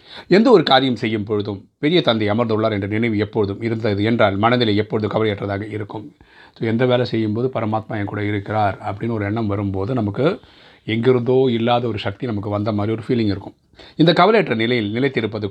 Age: 30-49